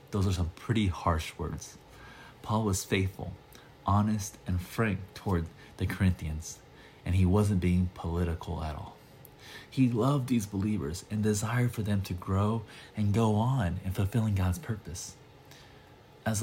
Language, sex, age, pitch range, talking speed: English, male, 20-39, 90-110 Hz, 145 wpm